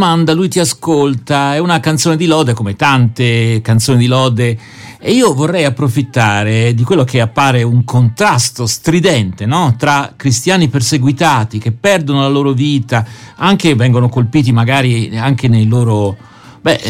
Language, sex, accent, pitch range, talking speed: Italian, male, native, 120-150 Hz, 145 wpm